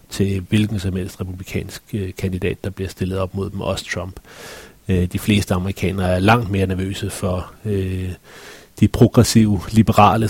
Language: Danish